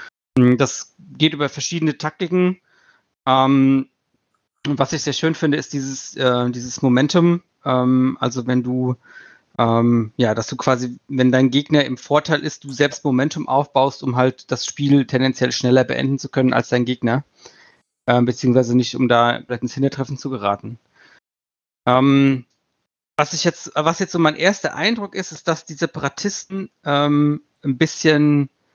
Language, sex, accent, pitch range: German, male, German, 130-155 Hz